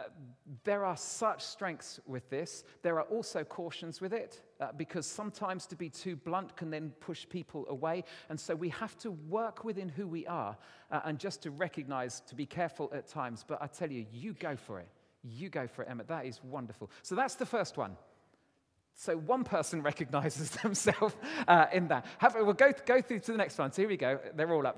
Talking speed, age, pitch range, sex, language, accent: 210 wpm, 40-59, 145-200 Hz, male, English, British